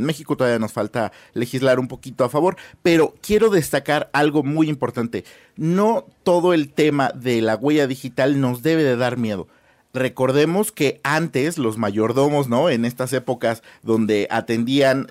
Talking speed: 160 wpm